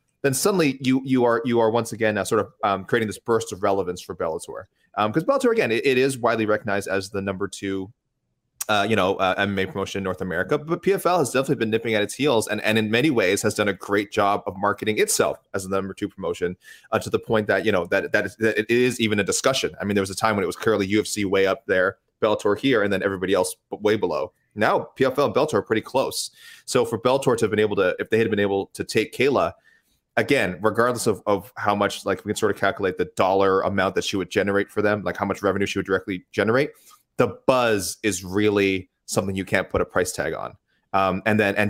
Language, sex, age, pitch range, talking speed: English, male, 30-49, 100-125 Hz, 250 wpm